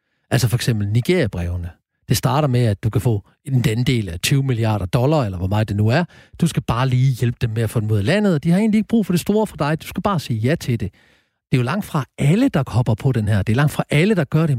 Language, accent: Danish, native